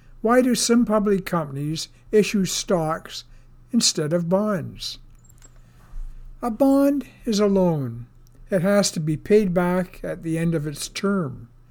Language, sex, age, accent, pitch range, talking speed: English, male, 60-79, American, 135-195 Hz, 140 wpm